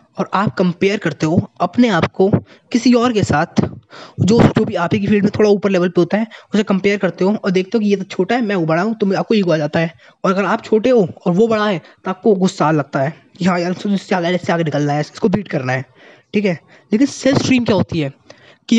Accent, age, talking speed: native, 20-39, 245 wpm